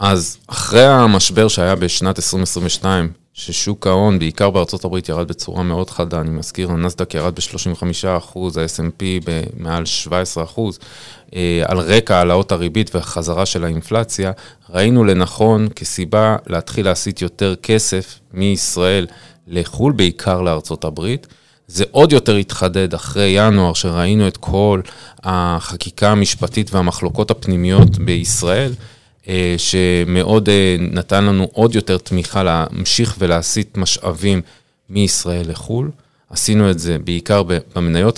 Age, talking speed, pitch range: 30-49, 115 wpm, 90-105 Hz